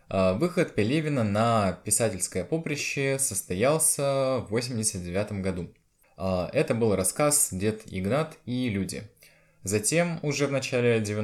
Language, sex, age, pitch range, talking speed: Russian, male, 20-39, 95-135 Hz, 105 wpm